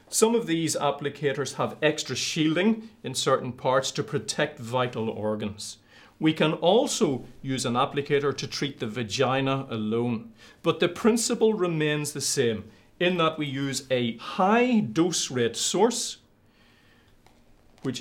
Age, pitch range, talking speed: 40-59, 120-170 Hz, 135 wpm